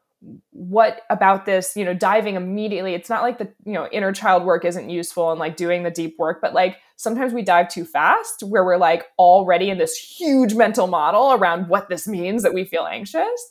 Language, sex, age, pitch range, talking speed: English, female, 20-39, 170-230 Hz, 215 wpm